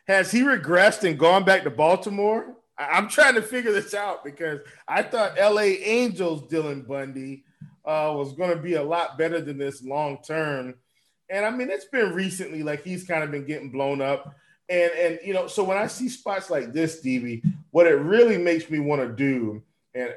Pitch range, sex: 145-200 Hz, male